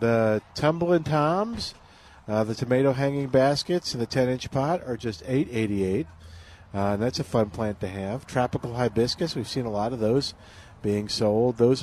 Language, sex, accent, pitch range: English, male, American, 110-135 Hz